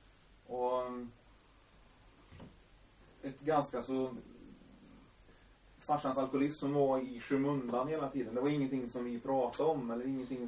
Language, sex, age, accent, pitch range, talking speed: Swedish, male, 30-49, native, 115-140 Hz, 115 wpm